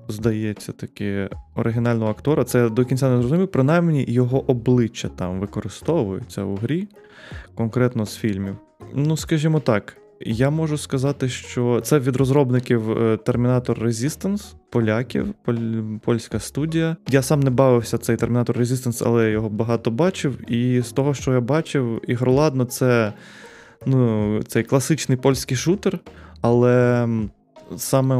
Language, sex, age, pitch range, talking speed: Ukrainian, male, 20-39, 110-135 Hz, 130 wpm